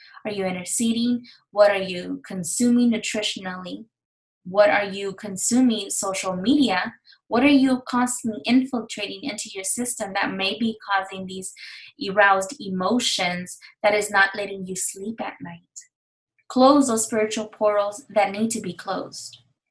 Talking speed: 140 wpm